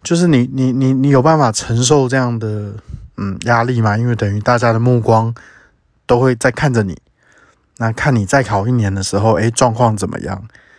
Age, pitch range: 20-39, 110-135 Hz